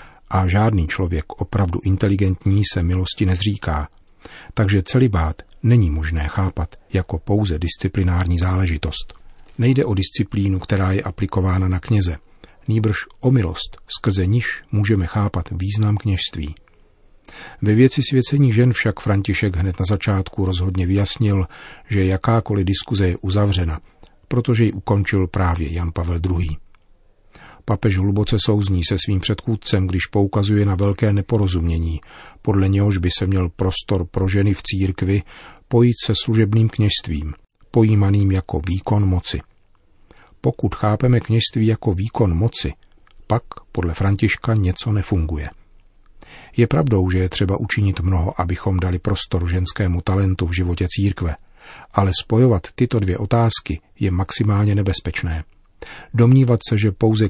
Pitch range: 90-110 Hz